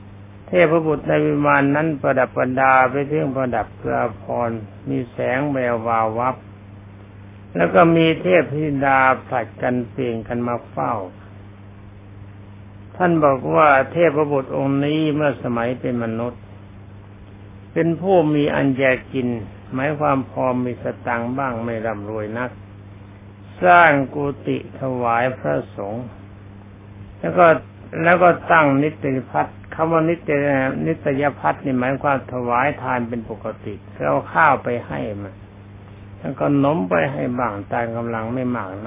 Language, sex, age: Thai, male, 60-79